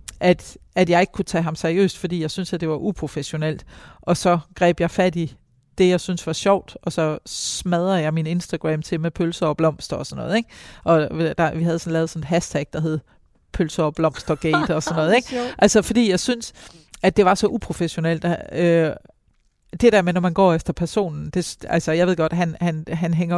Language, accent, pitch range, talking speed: Danish, native, 160-185 Hz, 225 wpm